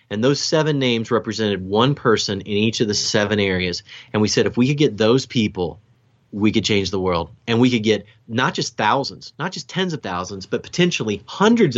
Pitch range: 105-130 Hz